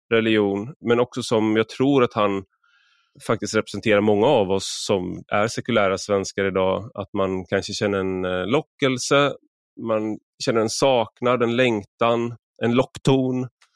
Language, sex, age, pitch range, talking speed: Swedish, male, 20-39, 100-130 Hz, 140 wpm